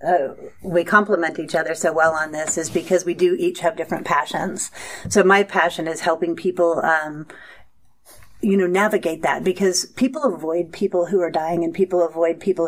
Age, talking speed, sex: 40-59, 185 wpm, female